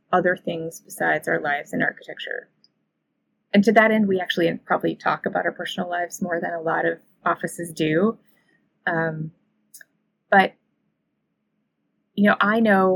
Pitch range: 165-210 Hz